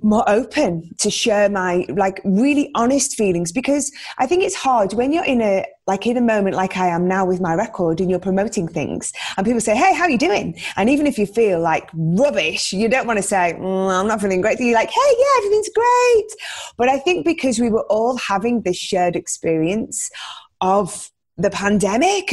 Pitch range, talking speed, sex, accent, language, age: 190-265 Hz, 205 wpm, female, British, English, 20-39